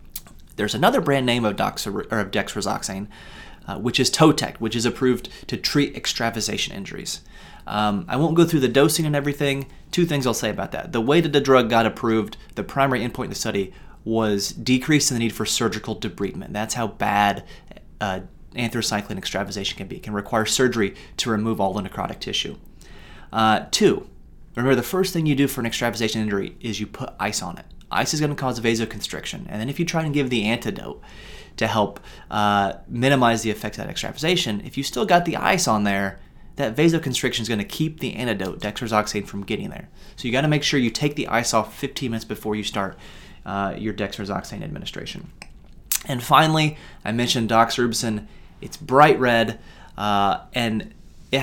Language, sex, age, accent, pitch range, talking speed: English, male, 30-49, American, 105-135 Hz, 195 wpm